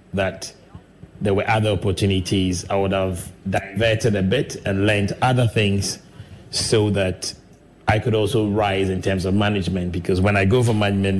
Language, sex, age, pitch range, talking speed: English, male, 30-49, 95-110 Hz, 165 wpm